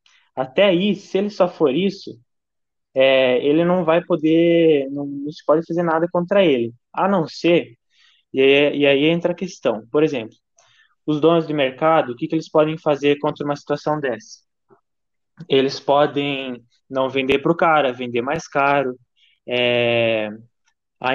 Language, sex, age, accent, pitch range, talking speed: Portuguese, male, 10-29, Brazilian, 135-165 Hz, 155 wpm